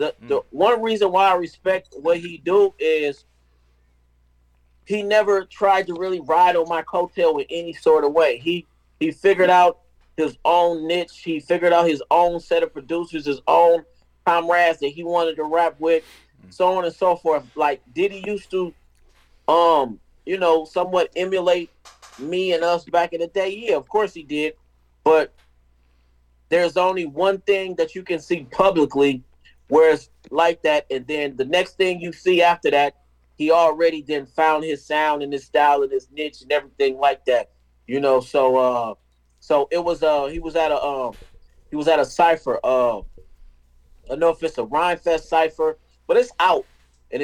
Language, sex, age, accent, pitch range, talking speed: English, male, 40-59, American, 135-180 Hz, 185 wpm